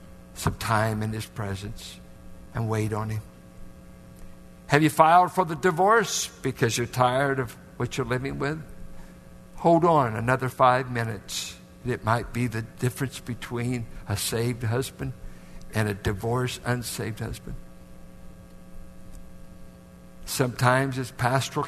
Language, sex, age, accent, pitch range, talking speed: English, male, 60-79, American, 90-130 Hz, 125 wpm